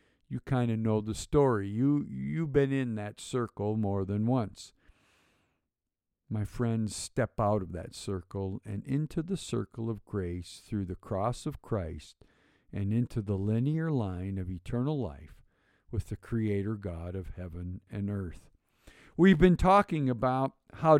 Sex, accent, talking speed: male, American, 155 wpm